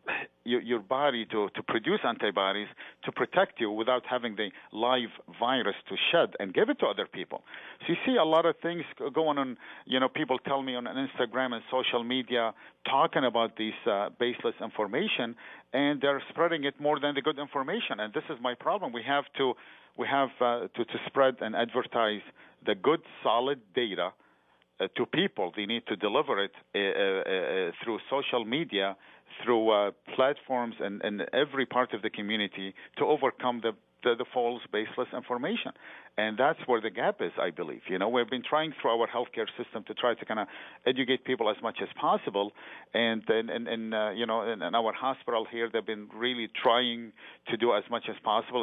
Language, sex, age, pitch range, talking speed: English, male, 50-69, 110-135 Hz, 195 wpm